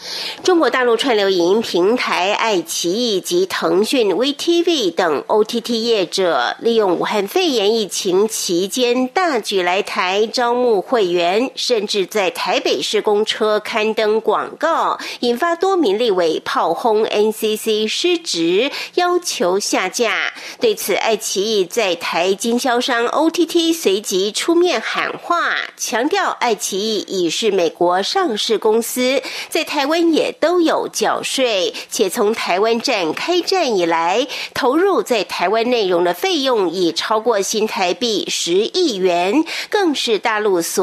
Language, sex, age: German, female, 50-69